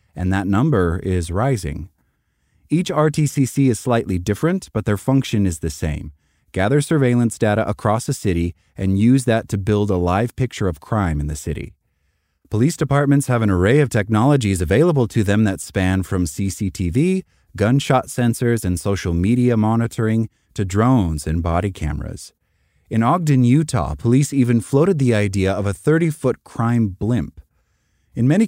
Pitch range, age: 95-125 Hz, 30-49